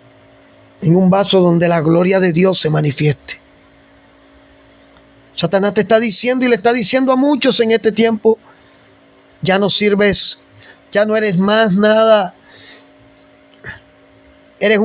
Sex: male